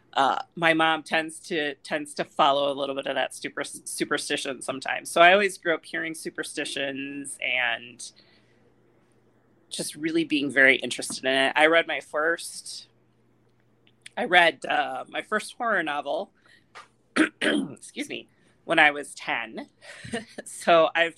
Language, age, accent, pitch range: English, 30-49, American, 140-175 Hz